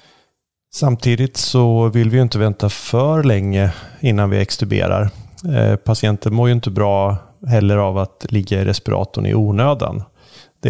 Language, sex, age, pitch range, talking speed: Swedish, male, 30-49, 100-120 Hz, 140 wpm